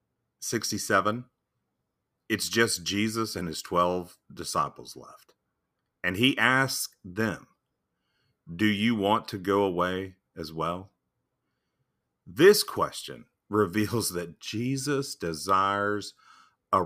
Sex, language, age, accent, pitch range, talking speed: male, English, 40-59, American, 85-110 Hz, 100 wpm